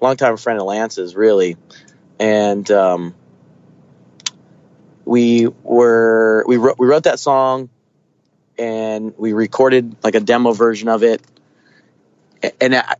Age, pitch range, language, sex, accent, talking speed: 30-49, 105-130 Hz, English, male, American, 115 wpm